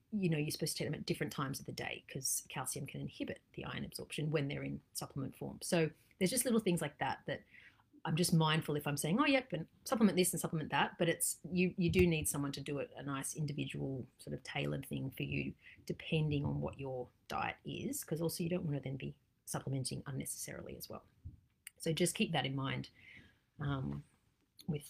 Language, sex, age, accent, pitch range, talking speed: English, female, 40-59, Australian, 140-185 Hz, 220 wpm